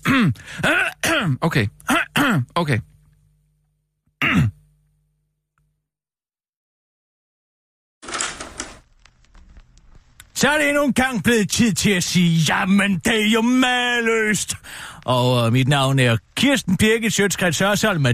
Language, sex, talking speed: Danish, male, 95 wpm